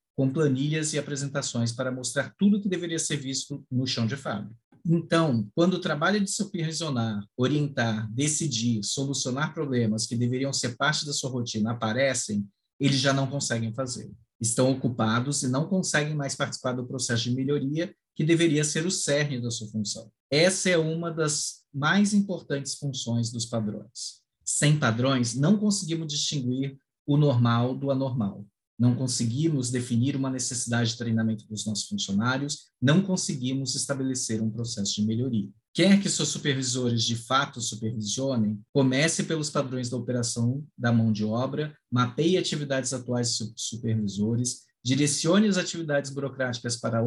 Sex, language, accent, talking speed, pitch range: male, Portuguese, Brazilian, 150 wpm, 115-150 Hz